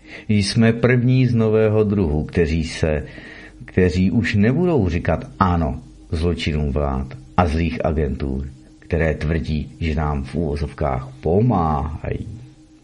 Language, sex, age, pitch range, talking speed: Czech, male, 50-69, 75-110 Hz, 105 wpm